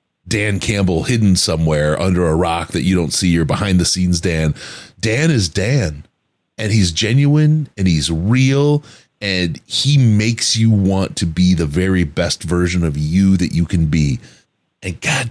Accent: American